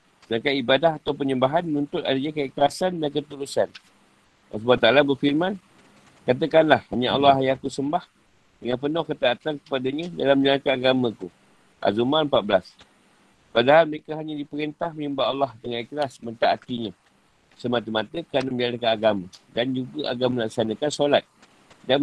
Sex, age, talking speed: male, 50-69, 120 wpm